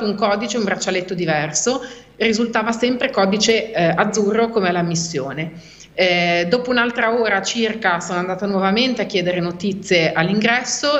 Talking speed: 135 wpm